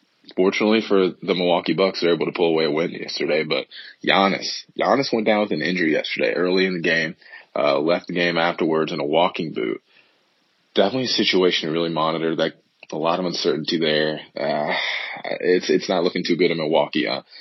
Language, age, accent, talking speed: English, 20-39, American, 200 wpm